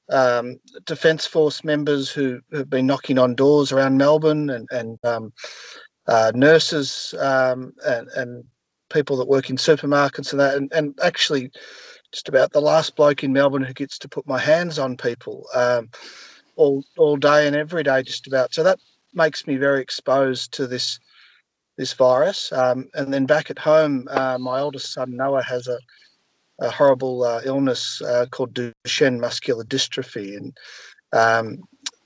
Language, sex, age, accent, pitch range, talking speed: English, male, 40-59, Australian, 125-150 Hz, 165 wpm